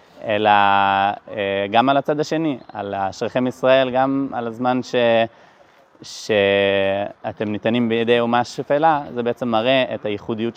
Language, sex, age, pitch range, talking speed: Hebrew, male, 20-39, 100-120 Hz, 125 wpm